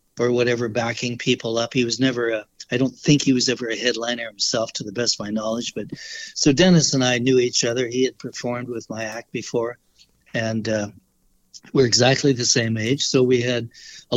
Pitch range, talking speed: 115-130 Hz, 210 wpm